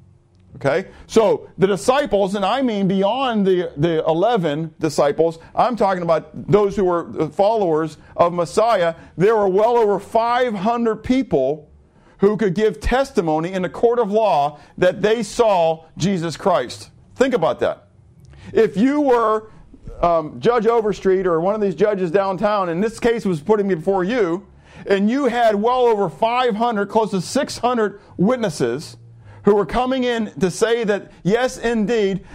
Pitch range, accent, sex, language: 165-235 Hz, American, male, English